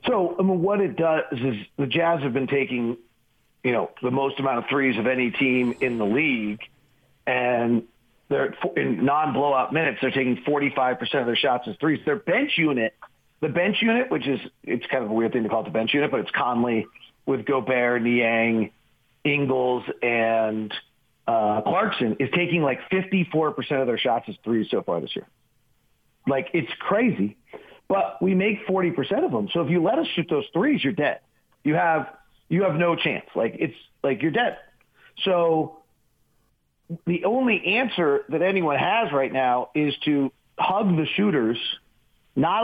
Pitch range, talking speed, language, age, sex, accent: 125-170 Hz, 185 wpm, English, 40-59, male, American